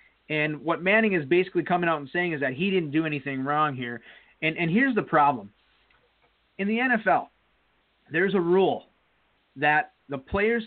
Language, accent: English, American